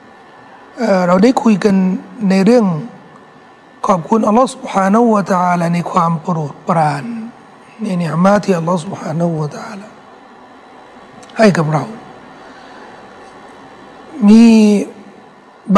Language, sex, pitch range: Thai, male, 195-250 Hz